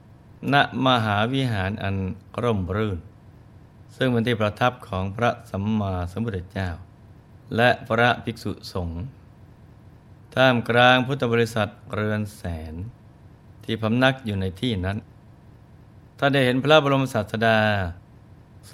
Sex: male